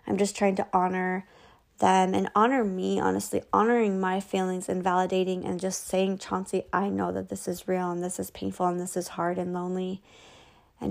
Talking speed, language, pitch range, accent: 200 wpm, English, 170-200 Hz, American